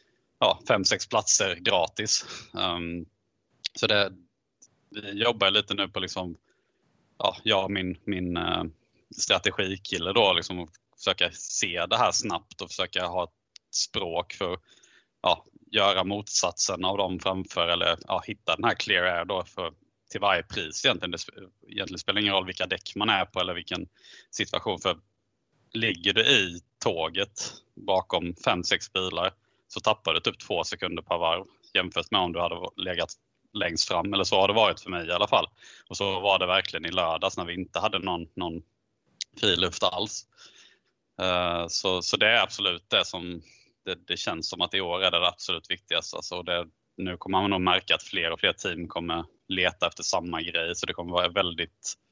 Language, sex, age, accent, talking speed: Swedish, male, 20-39, Norwegian, 180 wpm